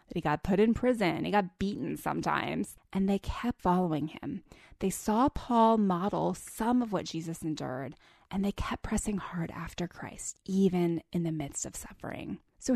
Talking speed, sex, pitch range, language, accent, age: 175 wpm, female, 180-240 Hz, English, American, 20-39